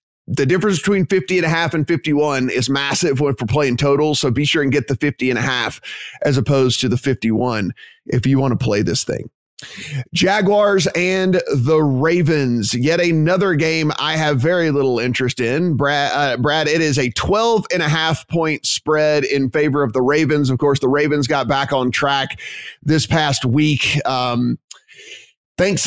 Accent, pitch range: American, 135-175 Hz